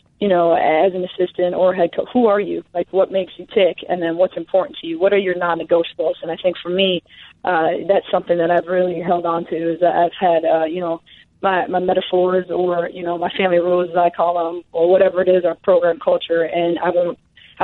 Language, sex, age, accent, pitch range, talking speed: English, female, 20-39, American, 170-190 Hz, 240 wpm